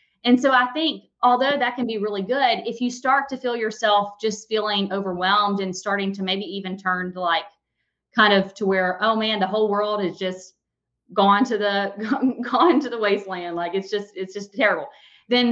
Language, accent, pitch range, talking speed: English, American, 190-235 Hz, 200 wpm